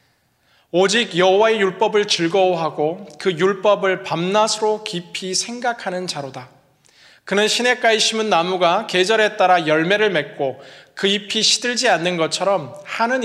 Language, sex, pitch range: Korean, male, 160-215 Hz